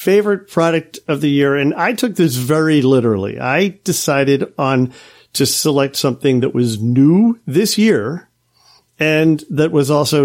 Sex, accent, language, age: male, American, English, 50-69